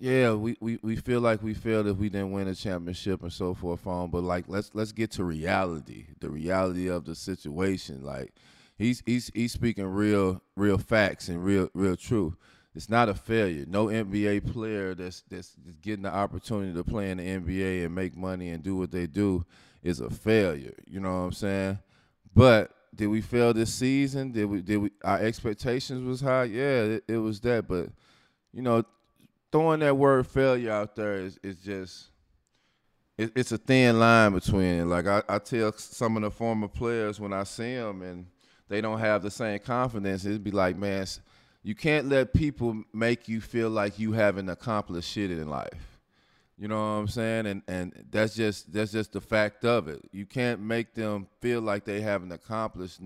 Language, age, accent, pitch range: English, 20-39, American, 95-115 Hz